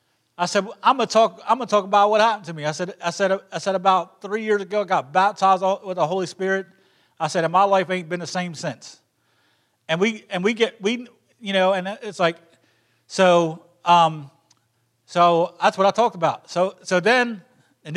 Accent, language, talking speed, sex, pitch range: American, English, 215 wpm, male, 155-200 Hz